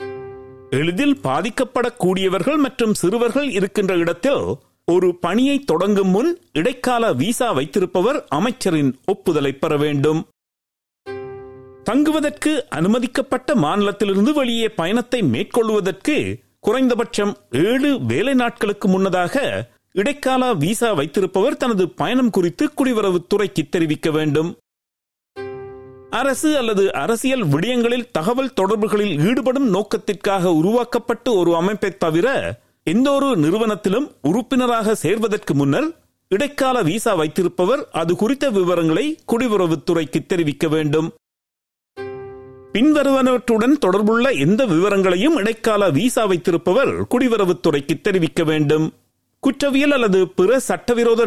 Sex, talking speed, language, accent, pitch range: male, 90 wpm, Tamil, native, 165-245 Hz